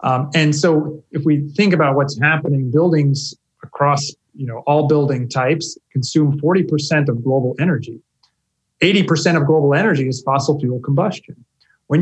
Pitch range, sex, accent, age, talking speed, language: 130-160 Hz, male, American, 30-49, 150 wpm, English